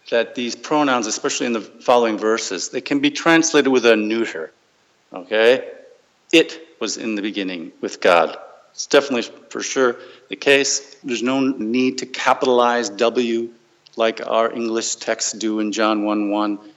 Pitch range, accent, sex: 115-155 Hz, American, male